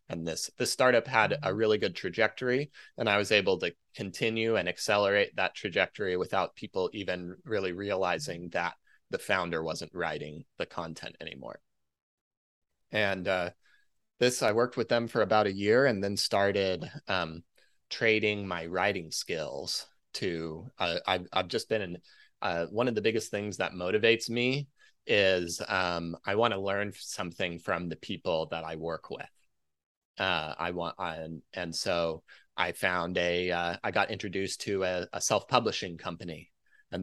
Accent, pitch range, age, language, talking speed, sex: American, 85-110 Hz, 20-39, English, 165 wpm, male